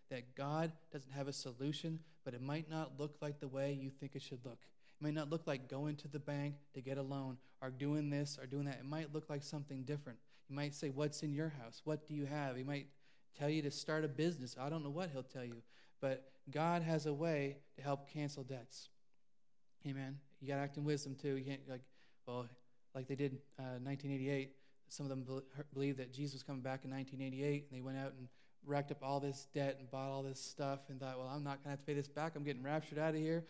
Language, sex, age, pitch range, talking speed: English, male, 30-49, 135-150 Hz, 255 wpm